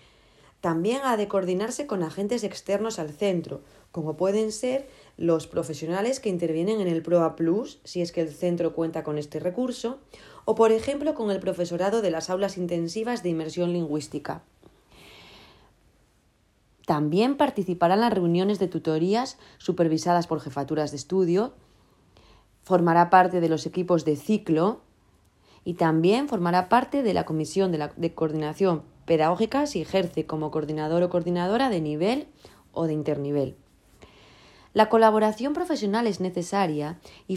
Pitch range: 160-205 Hz